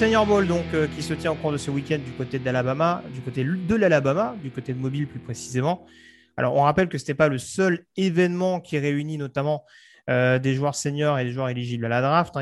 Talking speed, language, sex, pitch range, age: 240 wpm, French, male, 130-160 Hz, 30-49